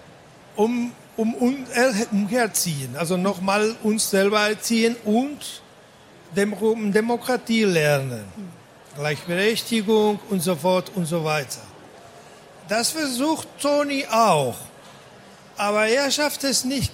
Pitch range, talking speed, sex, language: 175-215 Hz, 105 wpm, male, German